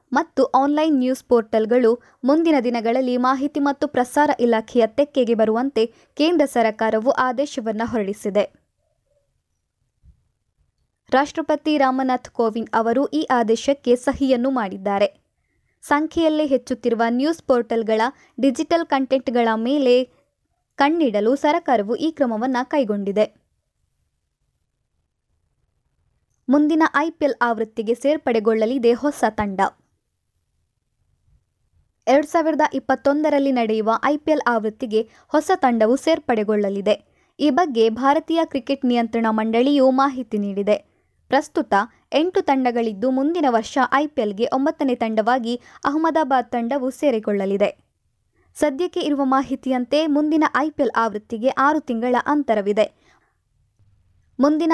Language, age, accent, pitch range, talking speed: Kannada, 20-39, native, 230-285 Hz, 85 wpm